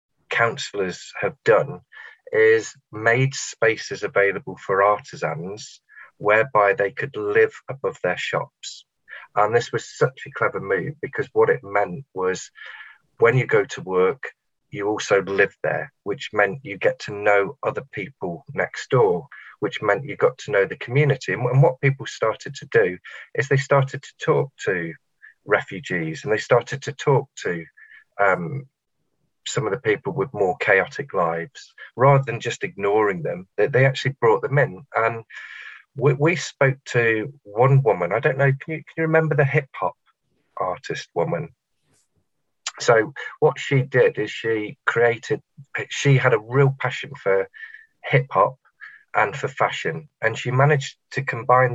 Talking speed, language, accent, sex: 155 wpm, English, British, male